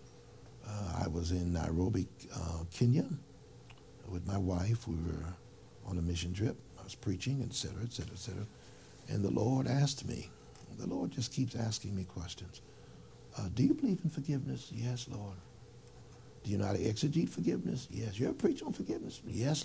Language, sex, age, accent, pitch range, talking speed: English, male, 60-79, American, 90-120 Hz, 170 wpm